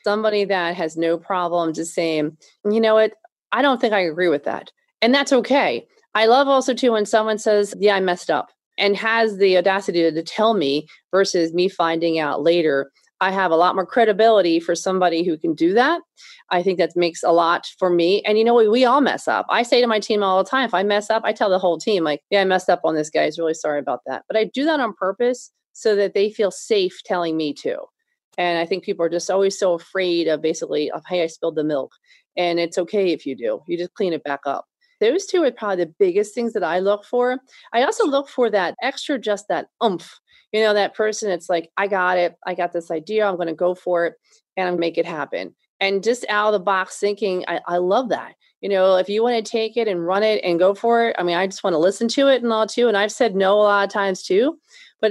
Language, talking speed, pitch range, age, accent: English, 260 wpm, 175-230 Hz, 30-49, American